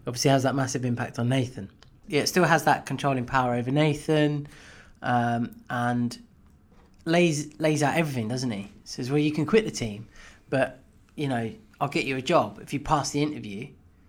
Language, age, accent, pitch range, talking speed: English, 20-39, British, 110-145 Hz, 190 wpm